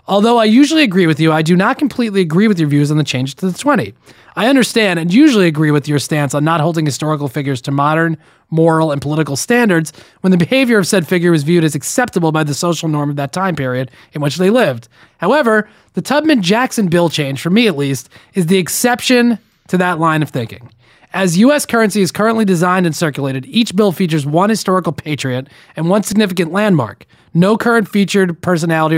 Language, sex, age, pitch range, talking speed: English, male, 30-49, 145-195 Hz, 205 wpm